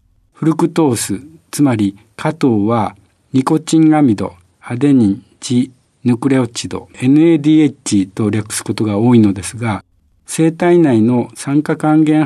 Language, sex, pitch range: Japanese, male, 105-150 Hz